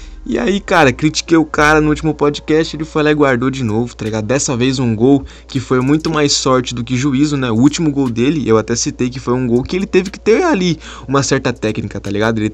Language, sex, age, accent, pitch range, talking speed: Portuguese, male, 20-39, Brazilian, 110-135 Hz, 260 wpm